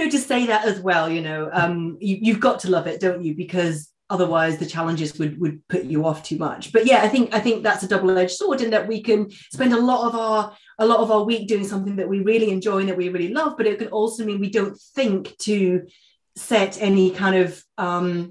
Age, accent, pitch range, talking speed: 30-49, British, 180-245 Hz, 255 wpm